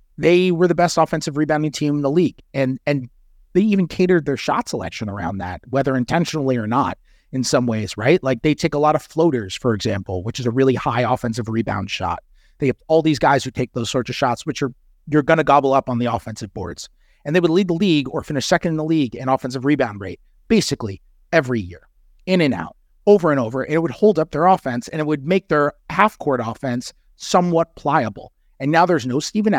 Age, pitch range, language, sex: 30-49, 120-170 Hz, English, male